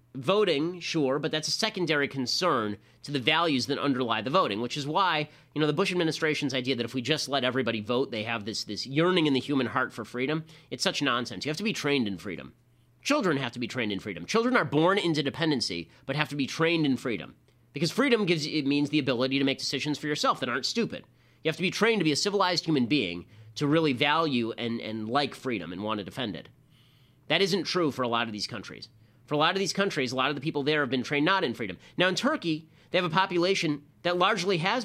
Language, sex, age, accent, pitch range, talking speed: English, male, 30-49, American, 120-155 Hz, 250 wpm